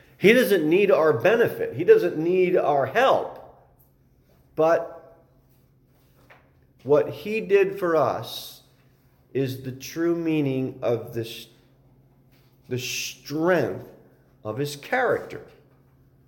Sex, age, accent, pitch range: male, 40-59, American, 135-175 Hz